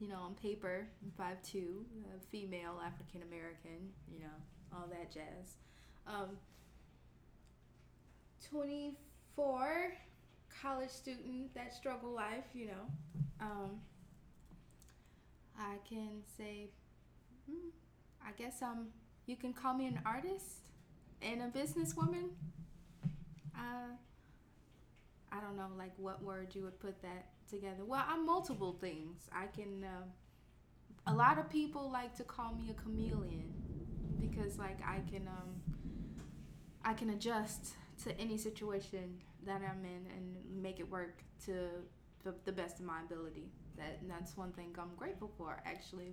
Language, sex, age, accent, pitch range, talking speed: English, female, 20-39, American, 170-210 Hz, 130 wpm